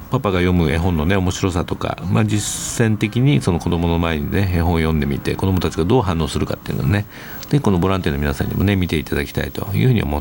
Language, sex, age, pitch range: Japanese, male, 50-69, 90-120 Hz